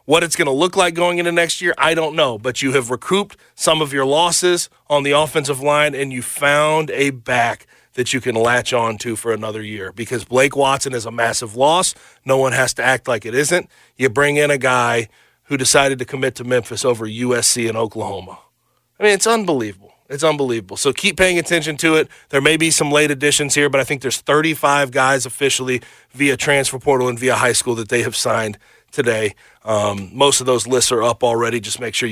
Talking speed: 220 wpm